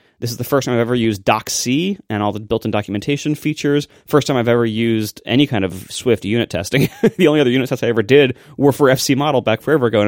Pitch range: 105-140 Hz